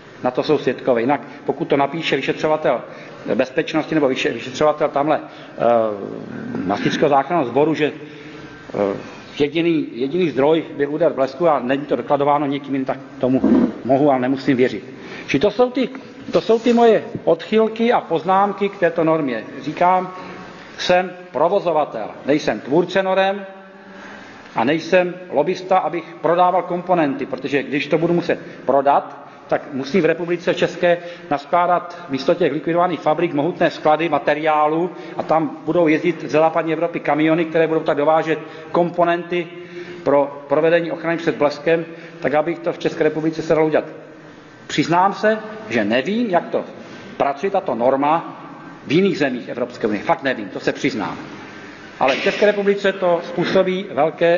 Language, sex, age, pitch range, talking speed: Czech, male, 40-59, 145-175 Hz, 145 wpm